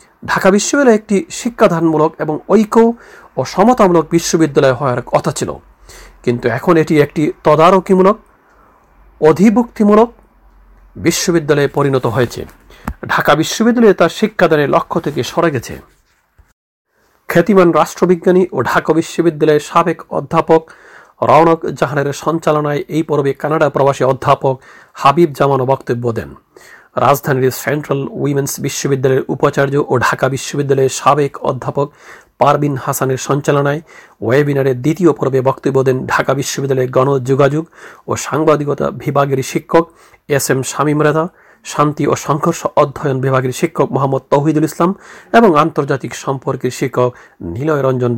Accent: native